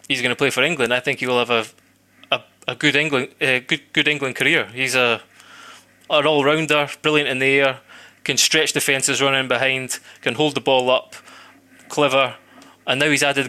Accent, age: British, 20-39